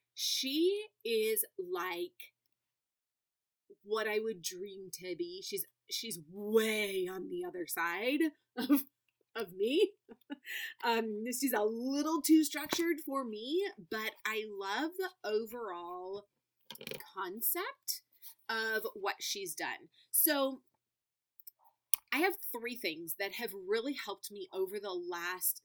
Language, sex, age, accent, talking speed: English, female, 30-49, American, 120 wpm